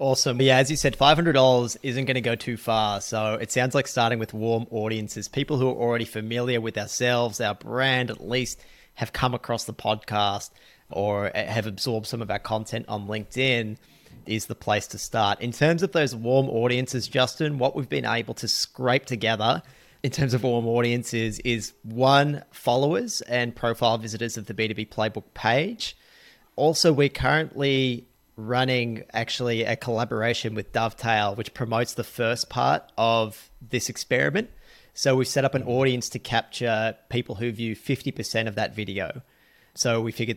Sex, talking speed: male, 170 wpm